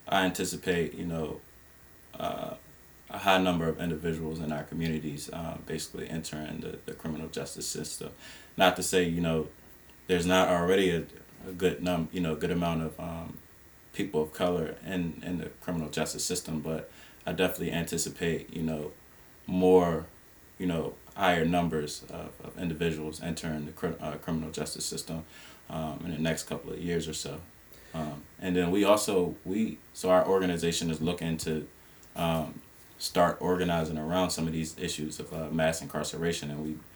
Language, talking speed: English, 170 wpm